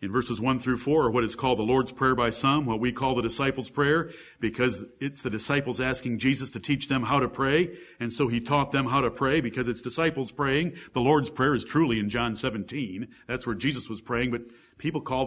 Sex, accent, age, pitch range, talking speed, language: male, American, 50-69, 125-180 Hz, 230 wpm, English